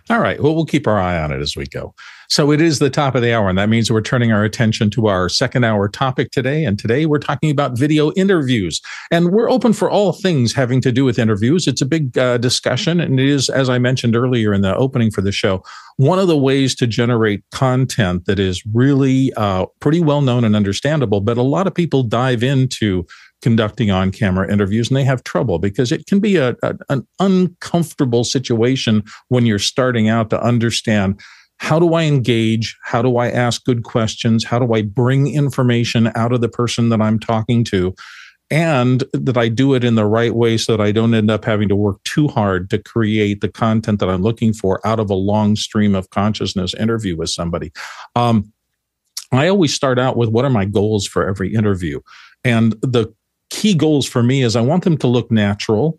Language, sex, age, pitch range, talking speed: English, male, 50-69, 105-135 Hz, 215 wpm